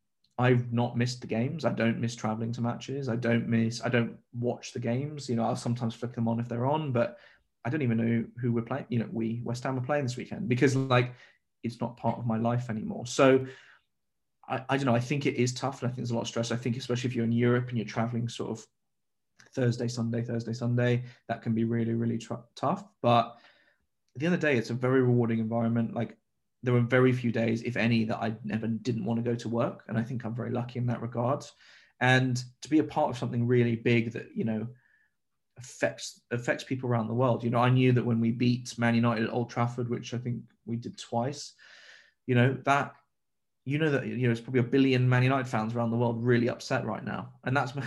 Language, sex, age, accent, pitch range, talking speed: English, male, 20-39, British, 115-125 Hz, 245 wpm